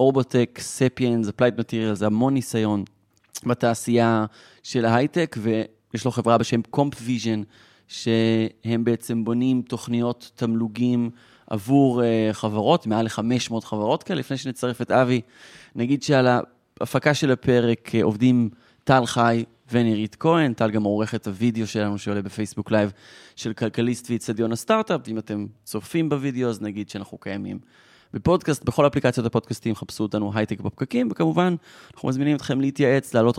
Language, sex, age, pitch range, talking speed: Hebrew, male, 20-39, 110-130 Hz, 135 wpm